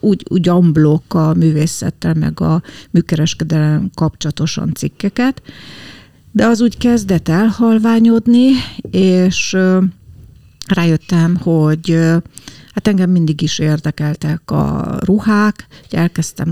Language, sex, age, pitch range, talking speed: Hungarian, female, 50-69, 155-200 Hz, 100 wpm